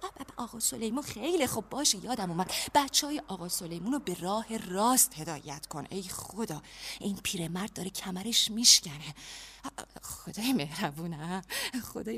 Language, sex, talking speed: Persian, female, 130 wpm